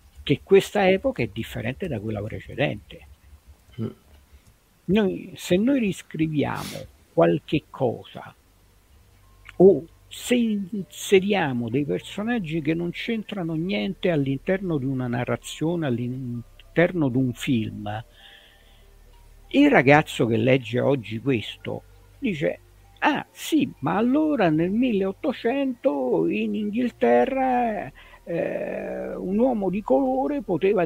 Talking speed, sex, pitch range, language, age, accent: 95 wpm, male, 115-190 Hz, Italian, 60-79, native